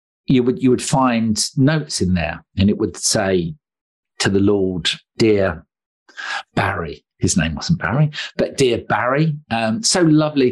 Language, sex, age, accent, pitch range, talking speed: English, male, 50-69, British, 105-140 Hz, 155 wpm